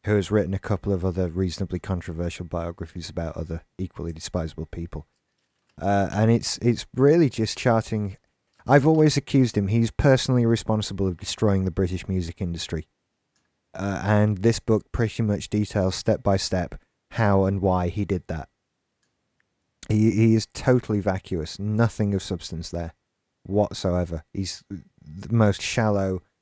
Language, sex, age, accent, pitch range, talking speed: English, male, 30-49, British, 85-105 Hz, 150 wpm